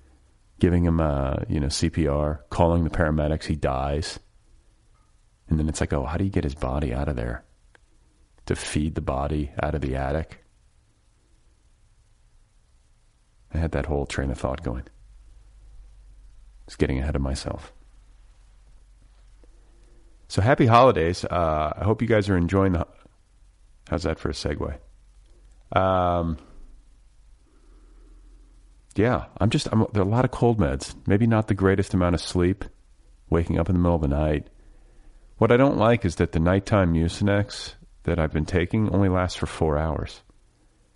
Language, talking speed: English, 155 wpm